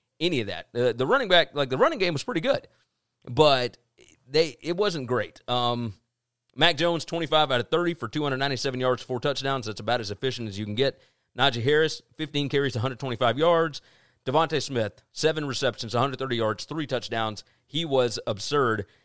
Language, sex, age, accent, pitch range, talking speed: English, male, 30-49, American, 120-165 Hz, 175 wpm